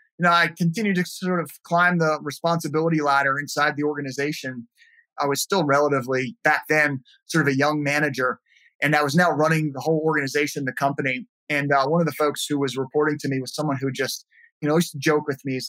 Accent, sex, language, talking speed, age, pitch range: American, male, English, 220 wpm, 30-49, 145-175 Hz